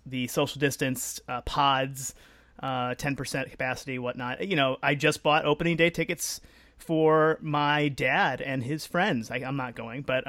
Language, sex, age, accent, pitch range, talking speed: English, male, 30-49, American, 130-165 Hz, 155 wpm